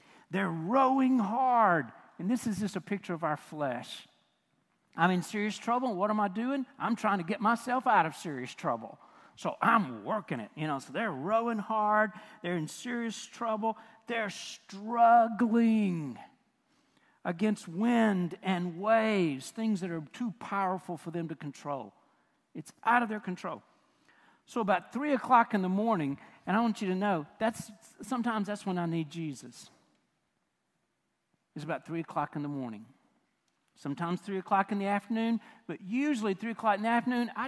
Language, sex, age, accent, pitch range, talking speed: English, male, 50-69, American, 175-235 Hz, 165 wpm